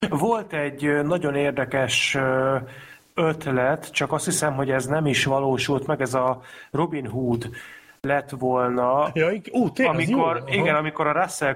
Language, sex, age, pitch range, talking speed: Hungarian, male, 30-49, 130-150 Hz, 130 wpm